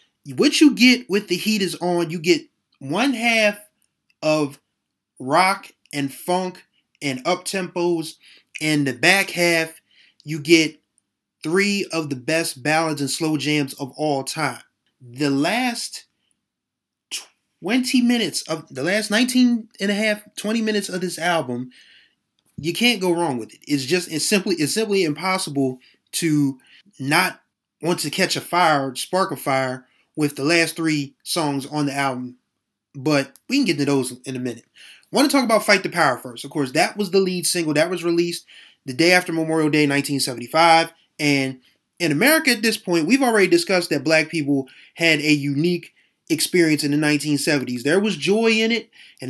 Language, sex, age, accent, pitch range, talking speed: English, male, 20-39, American, 145-185 Hz, 175 wpm